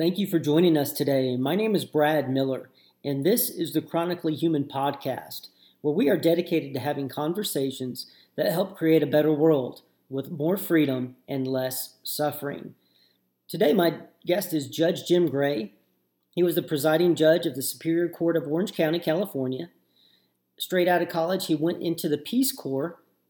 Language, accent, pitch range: English, American, 135-175 Hz